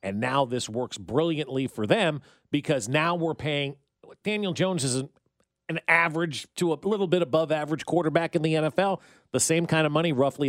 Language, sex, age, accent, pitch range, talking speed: English, male, 40-59, American, 125-165 Hz, 190 wpm